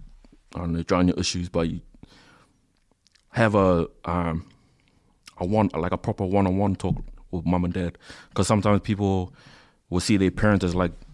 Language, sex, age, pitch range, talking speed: English, male, 20-39, 90-100 Hz, 170 wpm